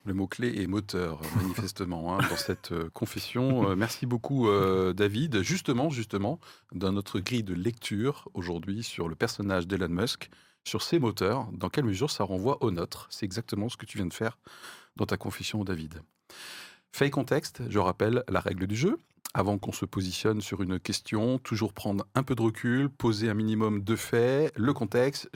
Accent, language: French, French